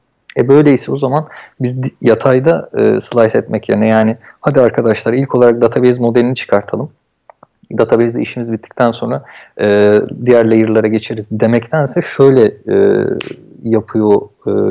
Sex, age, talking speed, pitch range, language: male, 40-59, 110 wpm, 115-150 Hz, Turkish